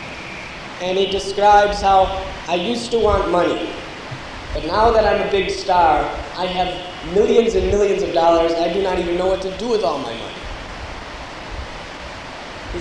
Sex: male